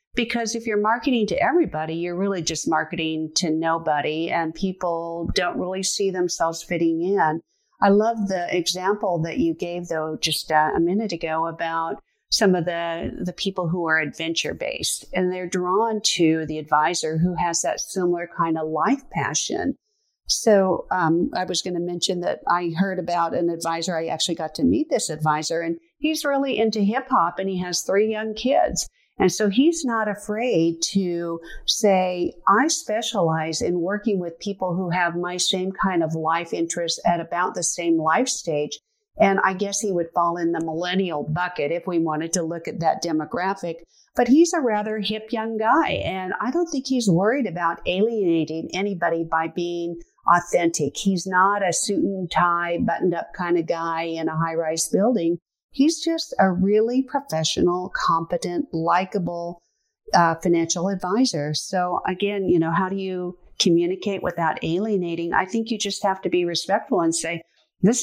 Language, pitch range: English, 165-205 Hz